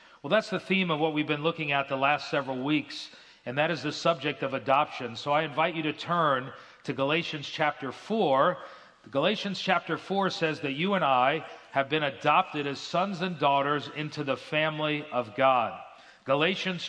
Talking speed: 185 wpm